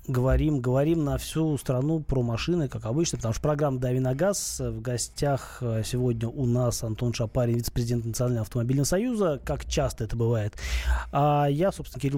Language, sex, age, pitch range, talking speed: Russian, male, 20-39, 125-155 Hz, 170 wpm